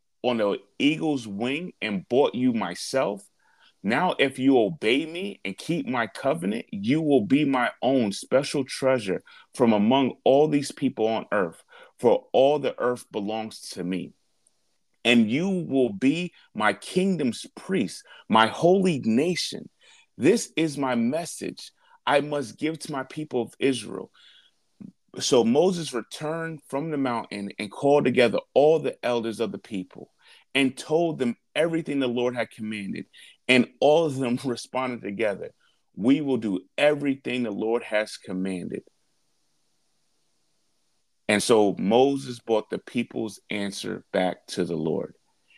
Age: 30-49